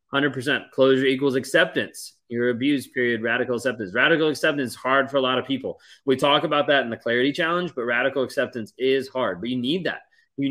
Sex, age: male, 30-49